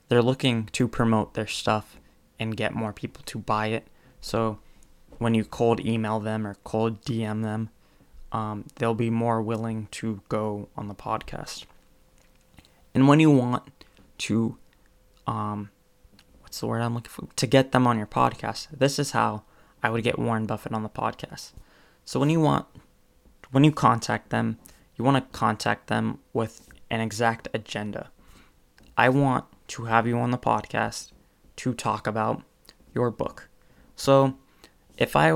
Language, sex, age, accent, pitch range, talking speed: English, male, 20-39, American, 110-135 Hz, 160 wpm